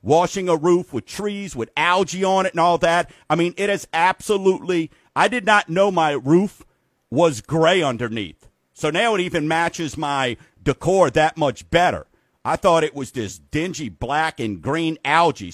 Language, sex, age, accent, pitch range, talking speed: English, male, 50-69, American, 135-185 Hz, 180 wpm